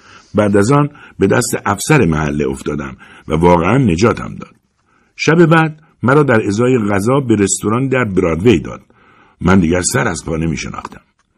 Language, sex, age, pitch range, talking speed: Persian, male, 60-79, 90-130 Hz, 155 wpm